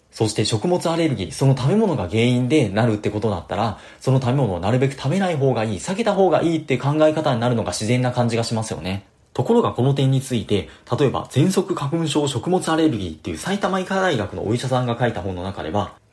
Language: Japanese